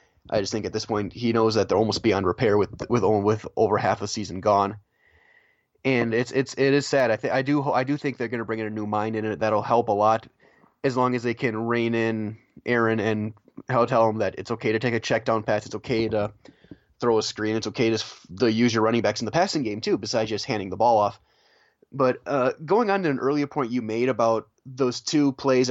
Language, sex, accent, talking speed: English, male, American, 250 wpm